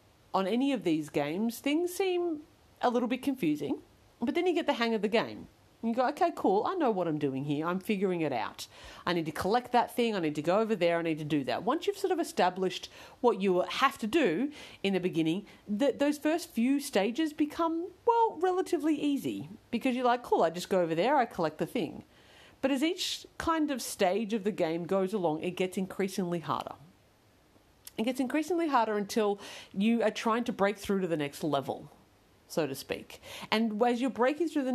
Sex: female